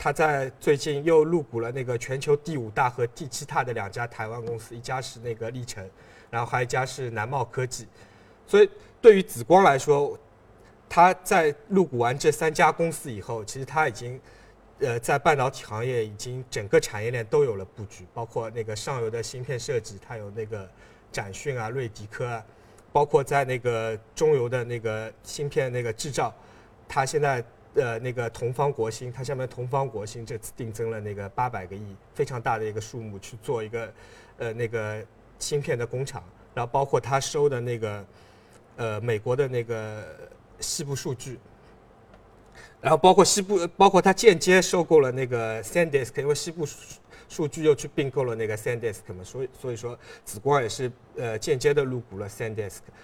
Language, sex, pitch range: Chinese, male, 115-145 Hz